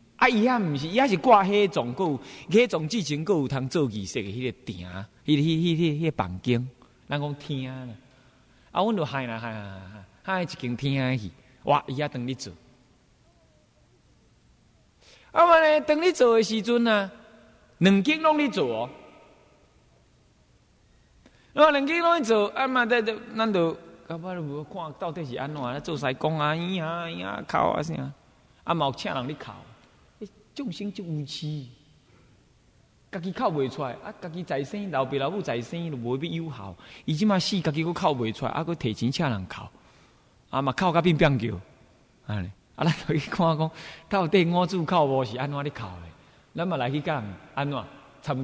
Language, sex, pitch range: Chinese, male, 130-205 Hz